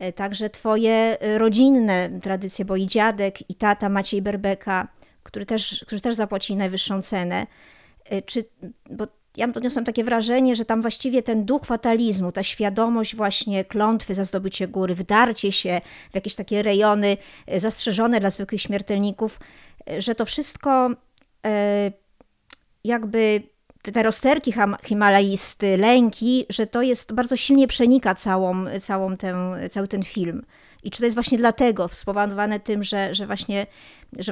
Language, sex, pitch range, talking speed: Polish, male, 195-225 Hz, 140 wpm